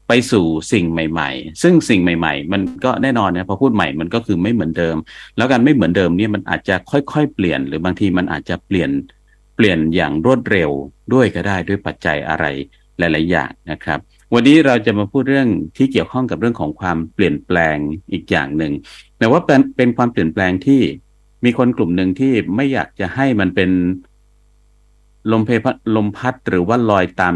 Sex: male